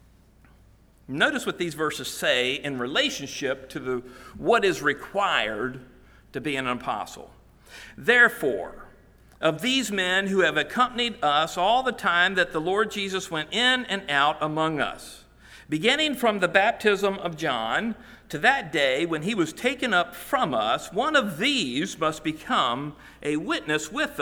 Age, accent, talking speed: 50-69, American, 150 wpm